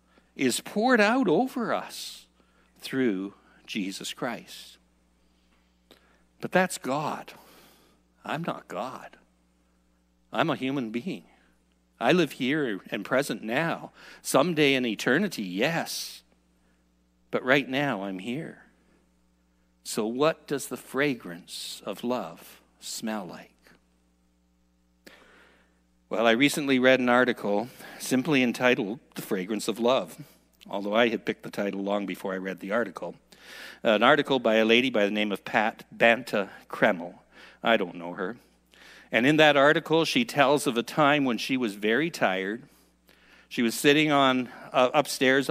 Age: 60-79